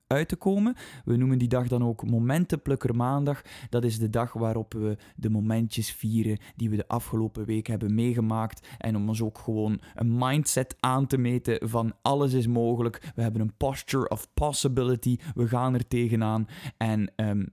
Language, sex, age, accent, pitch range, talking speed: Dutch, male, 20-39, Dutch, 115-140 Hz, 180 wpm